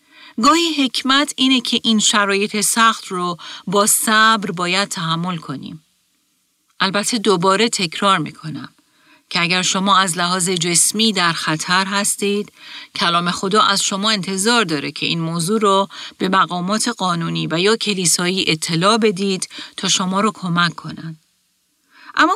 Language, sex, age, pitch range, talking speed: Persian, female, 40-59, 170-220 Hz, 135 wpm